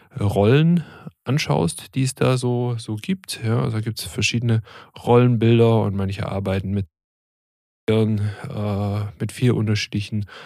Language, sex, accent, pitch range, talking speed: German, male, German, 105-140 Hz, 115 wpm